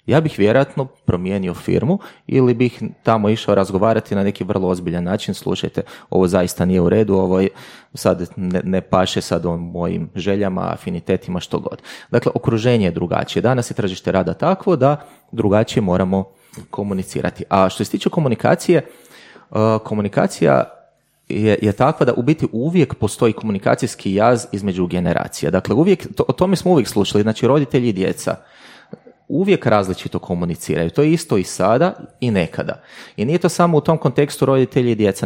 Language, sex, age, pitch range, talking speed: Croatian, male, 30-49, 95-140 Hz, 165 wpm